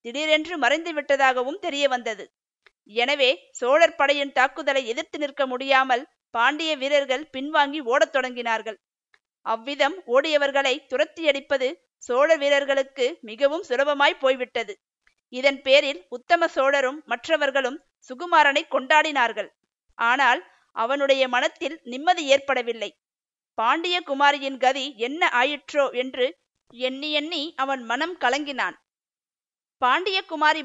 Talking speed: 90 wpm